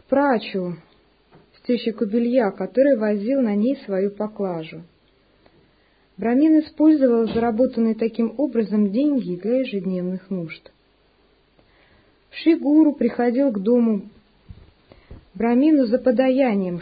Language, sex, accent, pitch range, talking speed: Russian, female, native, 190-250 Hz, 95 wpm